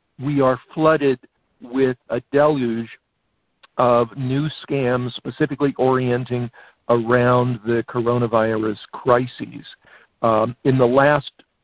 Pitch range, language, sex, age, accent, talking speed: 120-145 Hz, English, male, 50-69, American, 100 wpm